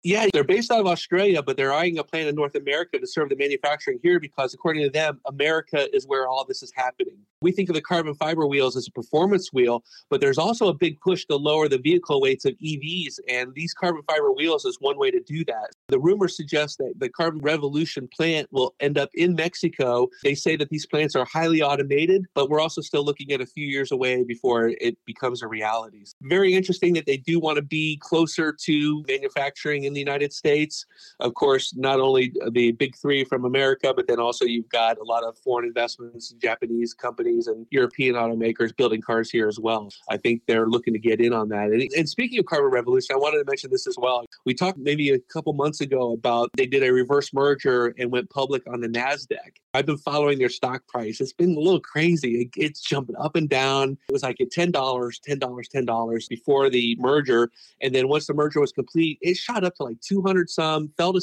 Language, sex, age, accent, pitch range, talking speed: English, male, 40-59, American, 130-175 Hz, 225 wpm